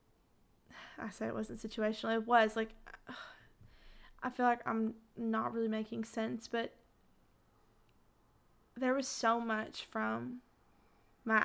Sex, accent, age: female, American, 20-39